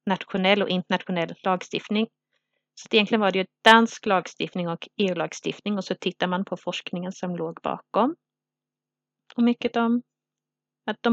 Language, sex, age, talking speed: Swedish, female, 30-49, 145 wpm